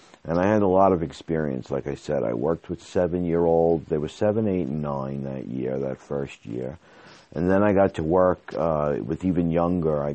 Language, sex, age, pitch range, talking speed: English, male, 50-69, 70-90 Hz, 215 wpm